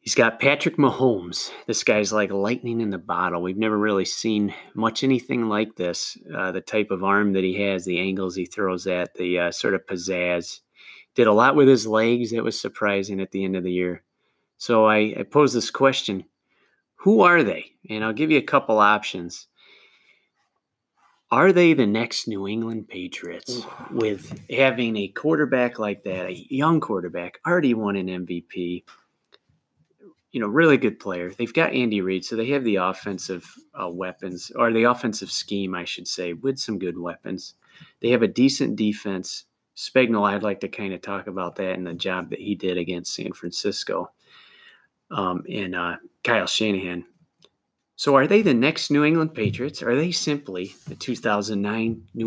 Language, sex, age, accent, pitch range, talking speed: English, male, 30-49, American, 95-120 Hz, 180 wpm